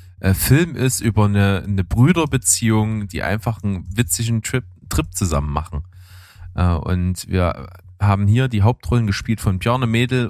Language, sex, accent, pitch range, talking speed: German, male, German, 95-115 Hz, 140 wpm